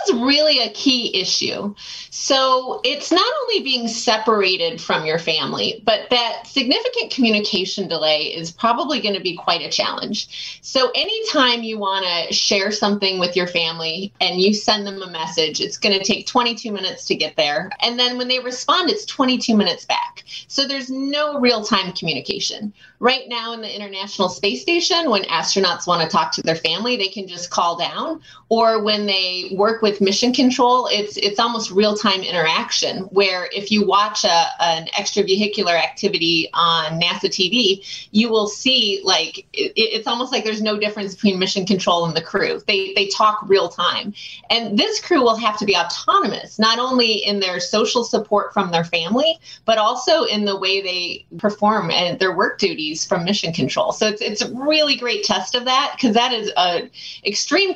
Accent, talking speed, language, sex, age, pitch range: American, 185 wpm, English, female, 30-49, 190-245 Hz